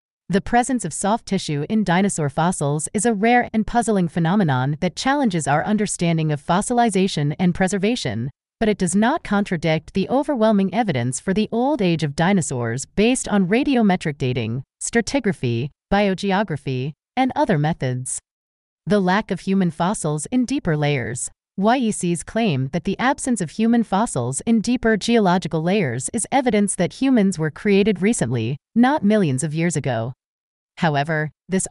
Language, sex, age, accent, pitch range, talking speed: English, female, 30-49, American, 155-220 Hz, 150 wpm